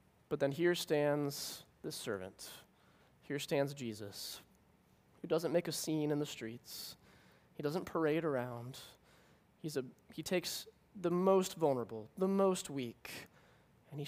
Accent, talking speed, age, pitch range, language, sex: American, 140 wpm, 20-39, 125-165 Hz, English, male